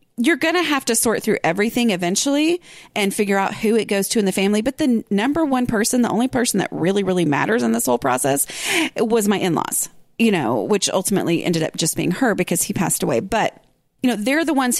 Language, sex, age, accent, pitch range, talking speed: English, female, 30-49, American, 175-235 Hz, 235 wpm